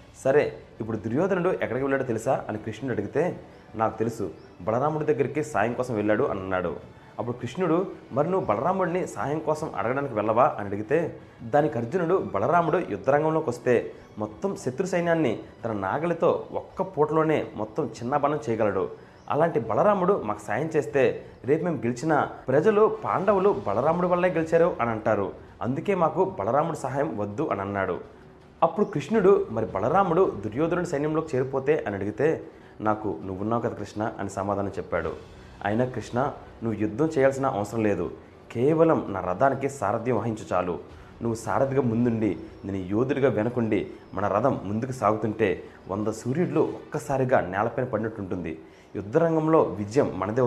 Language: Telugu